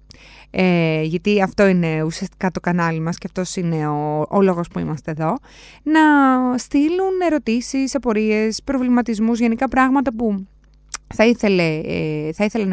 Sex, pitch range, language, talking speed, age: female, 165-270 Hz, Greek, 140 wpm, 20-39